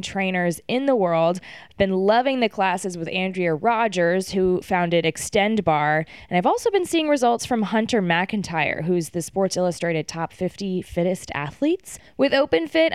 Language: English